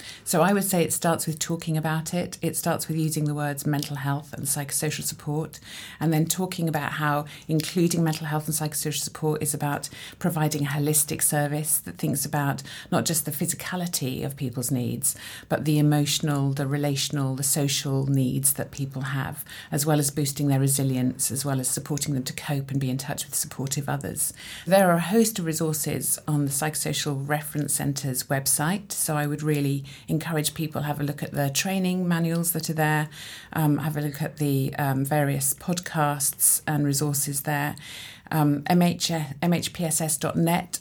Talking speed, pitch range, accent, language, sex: 180 wpm, 145-165 Hz, British, English, female